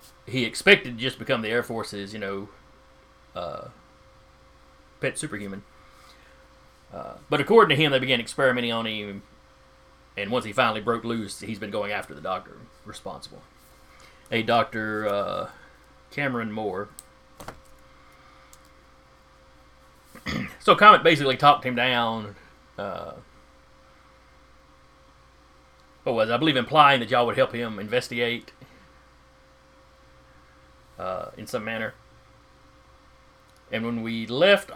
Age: 30-49